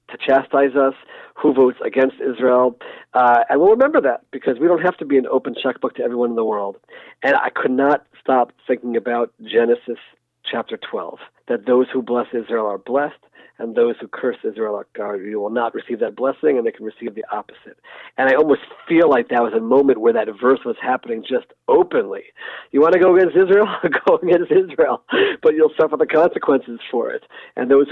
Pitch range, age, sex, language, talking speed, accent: 125-200 Hz, 40-59, male, English, 200 wpm, American